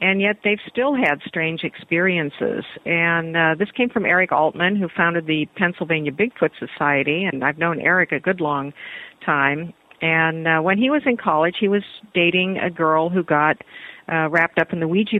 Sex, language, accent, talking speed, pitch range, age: female, English, American, 190 wpm, 155-185 Hz, 50-69